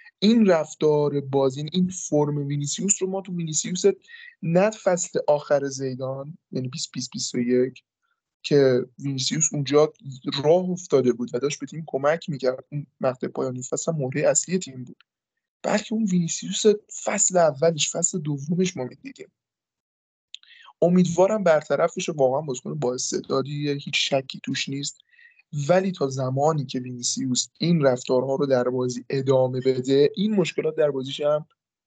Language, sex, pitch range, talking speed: Persian, male, 130-180 Hz, 135 wpm